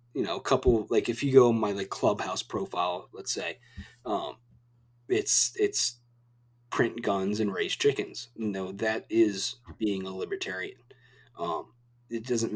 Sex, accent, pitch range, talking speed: male, American, 105-130 Hz, 160 wpm